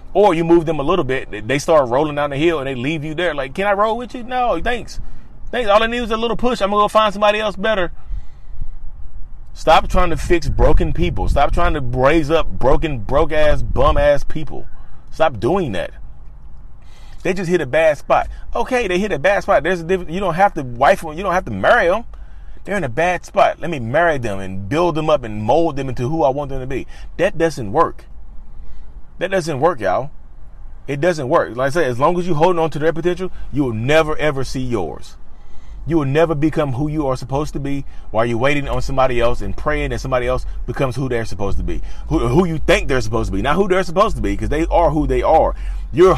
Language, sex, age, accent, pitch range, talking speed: English, male, 30-49, American, 120-170 Hz, 240 wpm